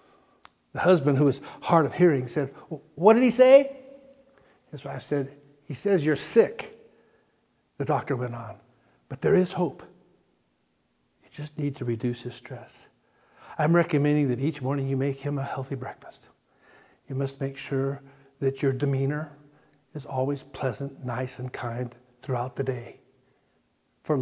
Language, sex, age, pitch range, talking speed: English, male, 60-79, 135-160 Hz, 155 wpm